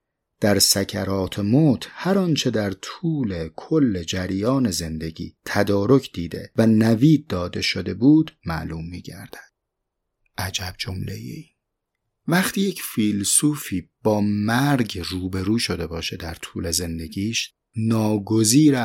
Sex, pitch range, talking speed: male, 95-130 Hz, 110 wpm